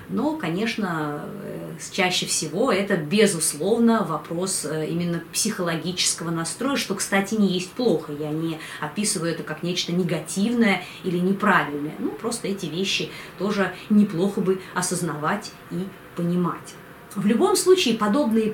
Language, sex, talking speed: Russian, female, 125 wpm